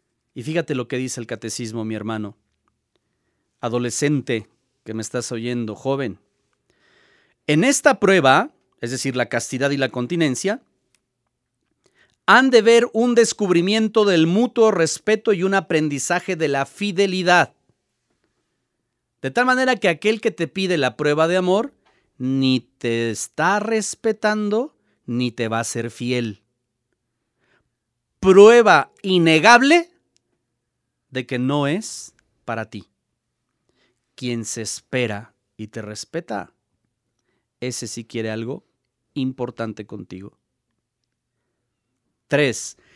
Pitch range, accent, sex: 120-200 Hz, Mexican, male